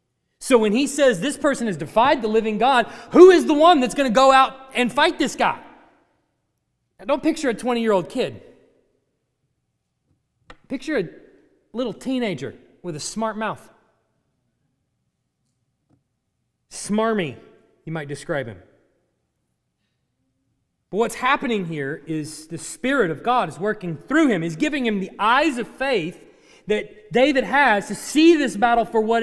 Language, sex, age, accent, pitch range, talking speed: English, male, 30-49, American, 195-300 Hz, 145 wpm